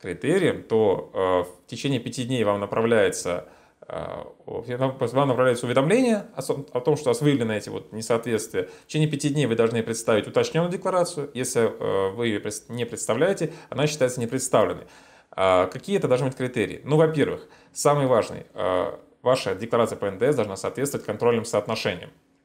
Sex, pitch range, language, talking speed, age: male, 110-150 Hz, Turkish, 165 wpm, 20-39